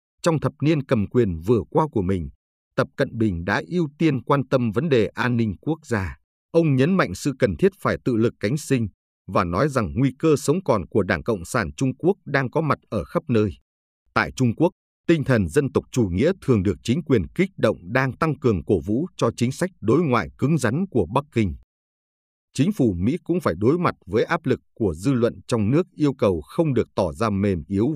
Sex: male